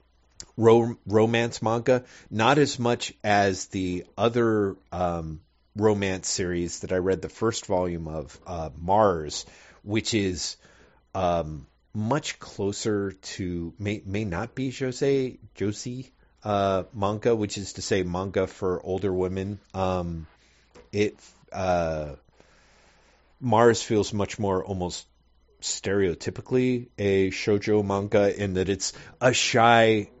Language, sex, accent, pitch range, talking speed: English, male, American, 85-105 Hz, 115 wpm